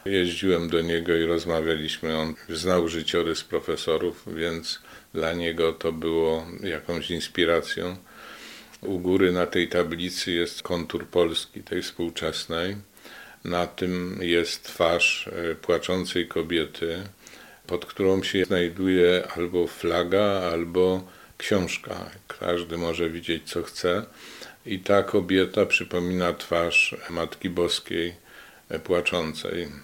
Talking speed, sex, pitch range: 105 wpm, male, 80-90 Hz